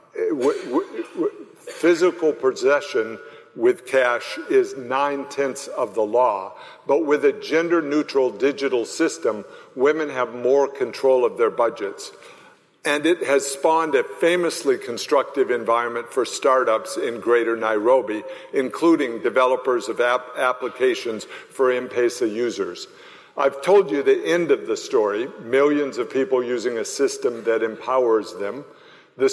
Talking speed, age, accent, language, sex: 125 wpm, 50-69, American, English, male